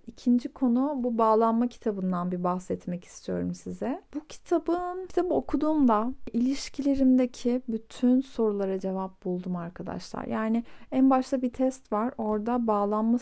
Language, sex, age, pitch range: Turkish, female, 30-49, 195-255 Hz